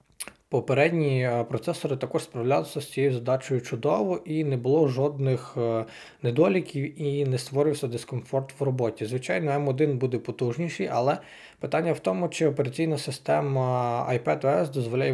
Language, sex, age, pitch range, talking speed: Ukrainian, male, 20-39, 120-145 Hz, 125 wpm